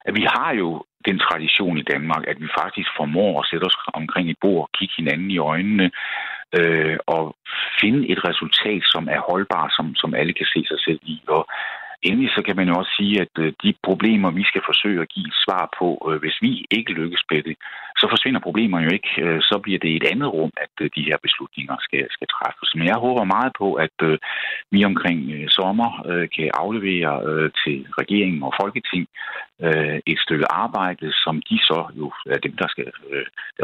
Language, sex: Danish, male